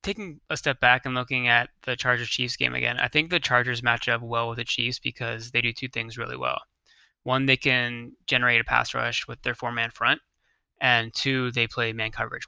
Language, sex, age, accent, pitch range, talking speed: English, male, 20-39, American, 115-125 Hz, 215 wpm